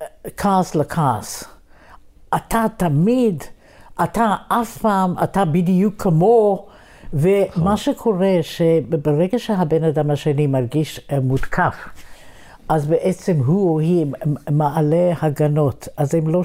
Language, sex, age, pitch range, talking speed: Hebrew, female, 60-79, 145-175 Hz, 100 wpm